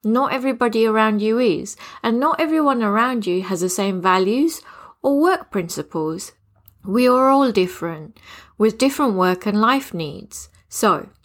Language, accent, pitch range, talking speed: English, British, 185-255 Hz, 150 wpm